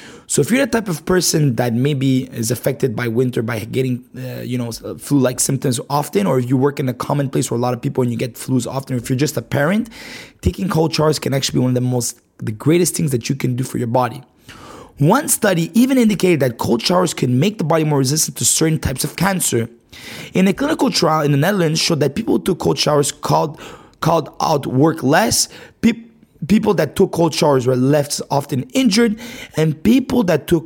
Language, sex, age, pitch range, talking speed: English, male, 20-39, 130-175 Hz, 225 wpm